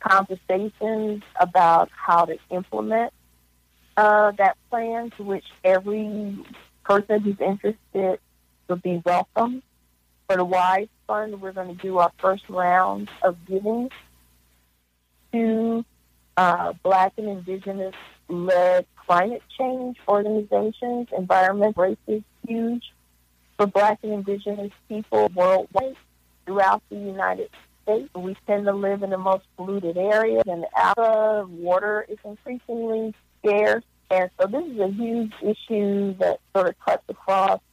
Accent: American